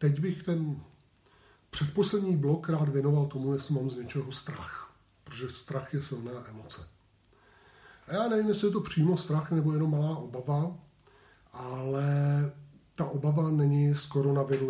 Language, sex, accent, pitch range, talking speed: Czech, male, native, 125-150 Hz, 145 wpm